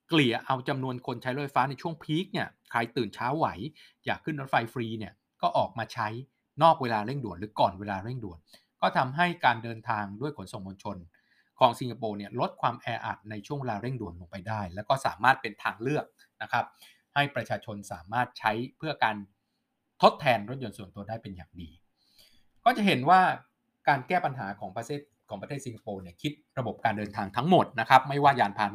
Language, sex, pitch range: Thai, male, 105-130 Hz